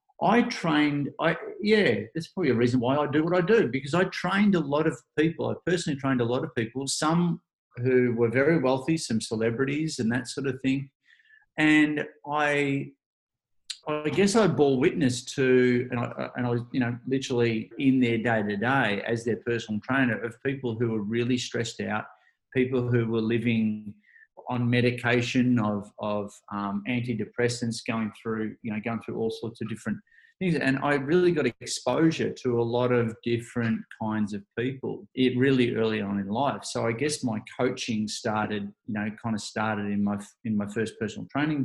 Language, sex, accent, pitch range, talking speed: English, male, Australian, 115-145 Hz, 185 wpm